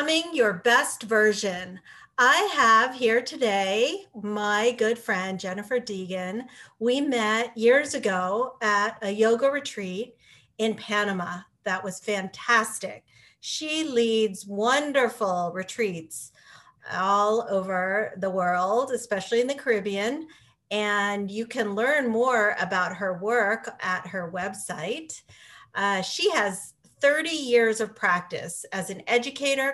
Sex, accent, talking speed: female, American, 115 wpm